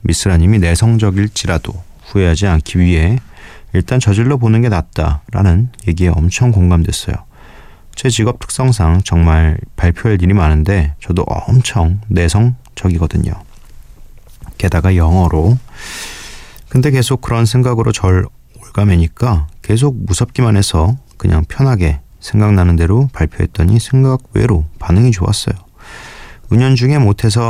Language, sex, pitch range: Korean, male, 85-110 Hz